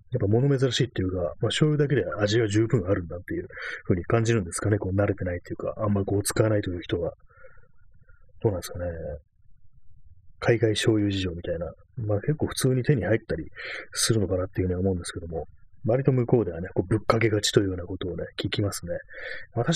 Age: 30-49